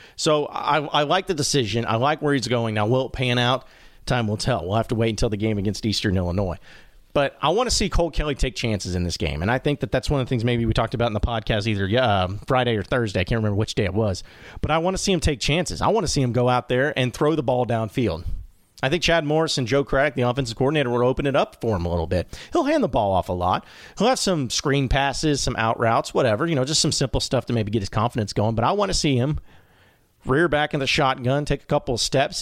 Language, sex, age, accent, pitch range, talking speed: English, male, 40-59, American, 115-150 Hz, 285 wpm